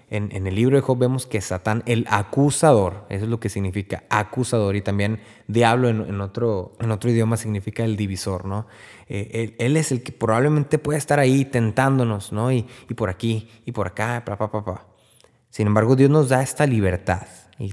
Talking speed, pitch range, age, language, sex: 205 wpm, 105-135 Hz, 20-39, Spanish, male